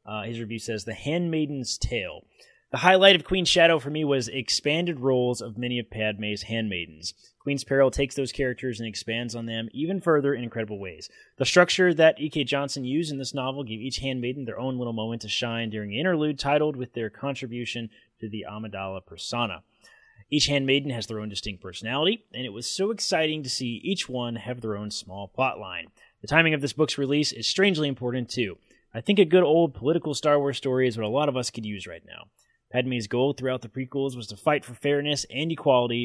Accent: American